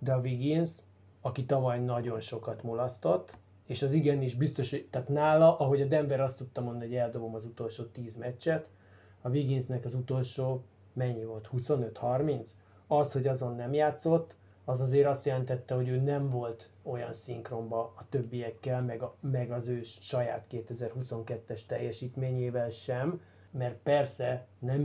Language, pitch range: Hungarian, 115-135 Hz